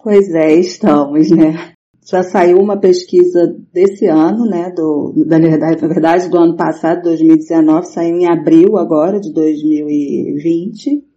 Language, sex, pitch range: Portuguese, female, 170-210 Hz